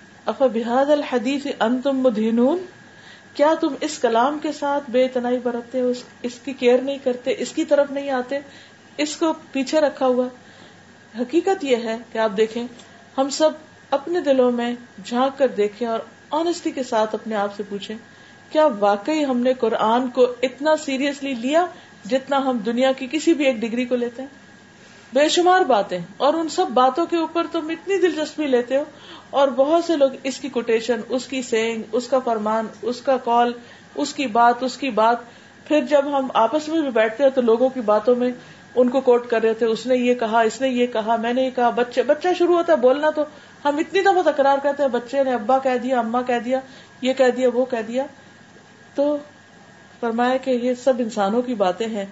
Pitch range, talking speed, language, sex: 235-285 Hz, 200 wpm, Urdu, female